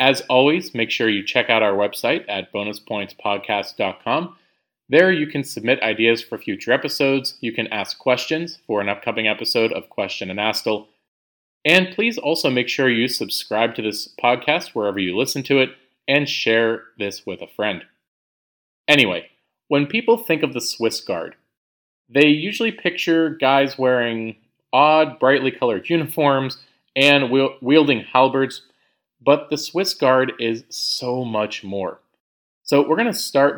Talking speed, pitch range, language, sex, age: 150 wpm, 115-150 Hz, English, male, 30-49